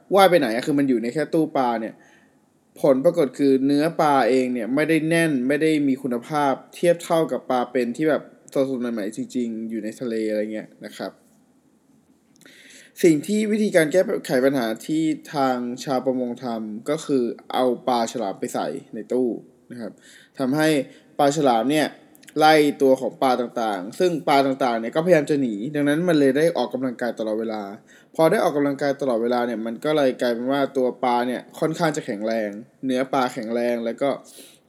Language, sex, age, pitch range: Thai, male, 20-39, 120-170 Hz